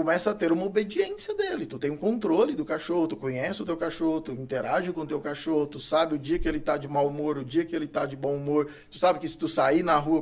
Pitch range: 145-175 Hz